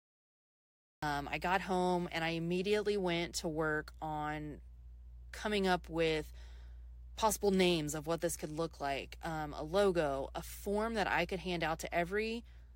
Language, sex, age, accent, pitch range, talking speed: English, female, 20-39, American, 155-185 Hz, 160 wpm